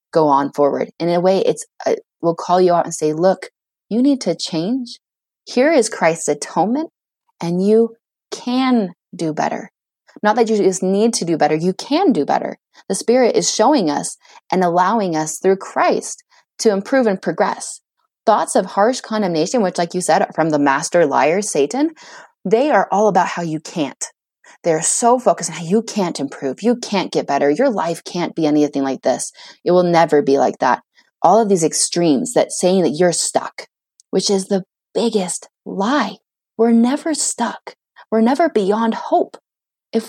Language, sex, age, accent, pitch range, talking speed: English, female, 30-49, American, 175-245 Hz, 185 wpm